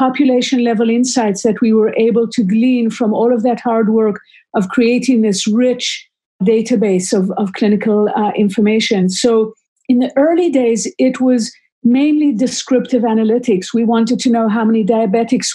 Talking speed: 160 wpm